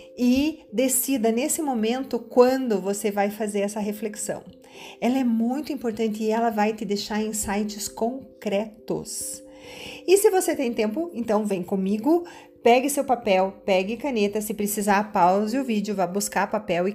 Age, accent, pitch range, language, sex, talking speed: 40-59, Brazilian, 195-255 Hz, Portuguese, female, 150 wpm